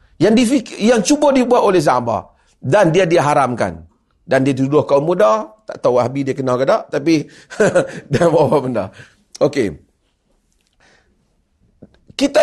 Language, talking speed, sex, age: Malay, 140 wpm, male, 40-59